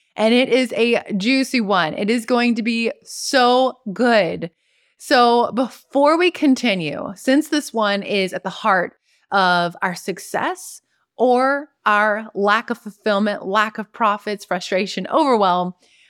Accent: American